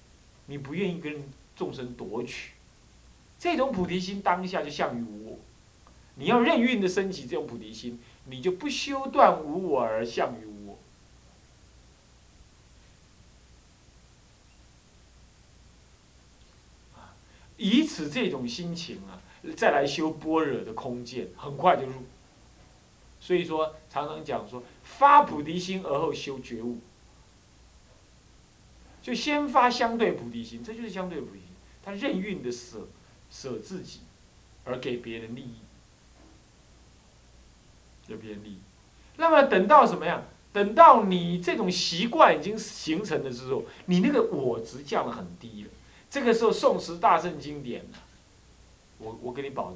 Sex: male